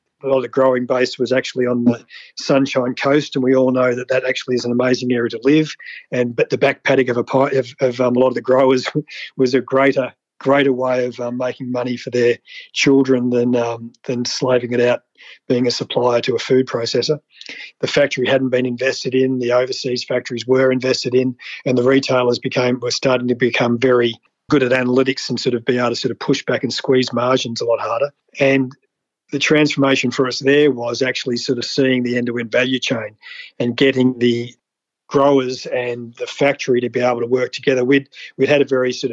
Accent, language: Australian, English